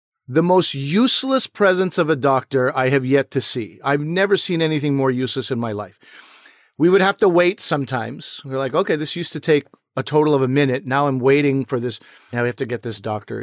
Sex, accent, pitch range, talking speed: male, American, 135-170 Hz, 230 wpm